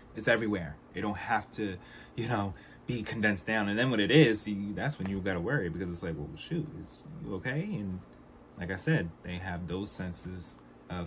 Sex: male